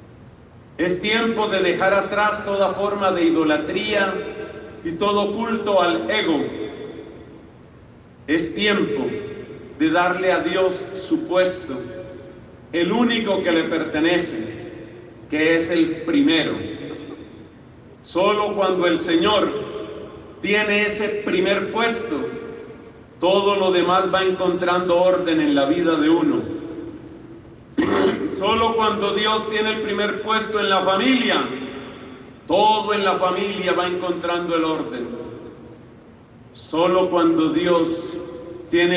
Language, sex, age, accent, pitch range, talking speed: Spanish, male, 40-59, Mexican, 160-200 Hz, 110 wpm